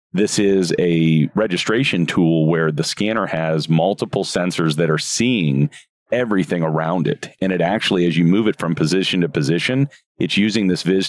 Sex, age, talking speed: male, 40-59, 175 wpm